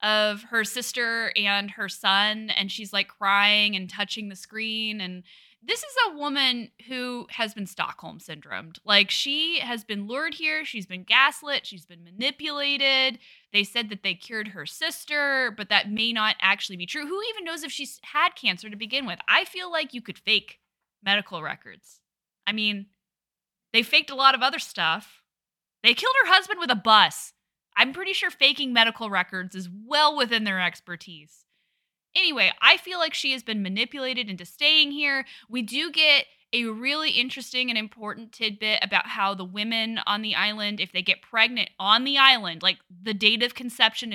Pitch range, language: 200-270 Hz, English